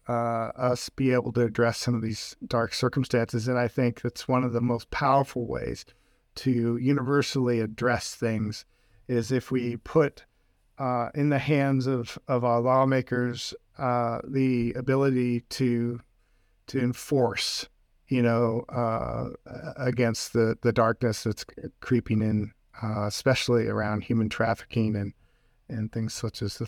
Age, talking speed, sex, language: 50-69, 145 wpm, male, English